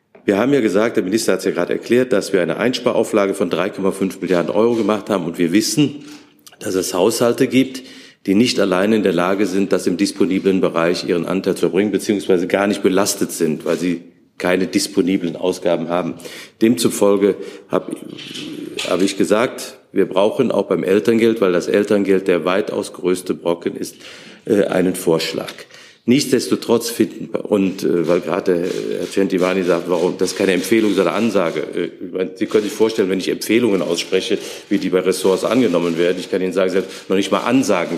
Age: 50-69